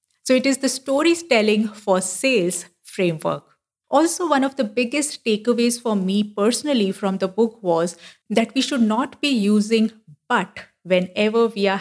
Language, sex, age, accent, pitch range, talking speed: English, female, 50-69, Indian, 185-235 Hz, 160 wpm